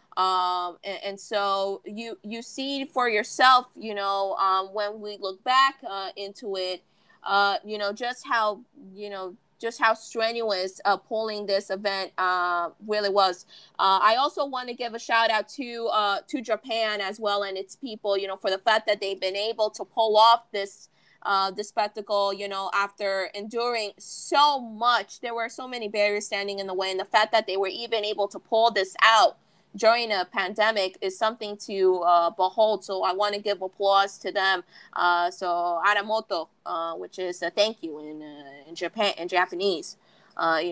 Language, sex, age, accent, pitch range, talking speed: English, female, 20-39, American, 195-230 Hz, 195 wpm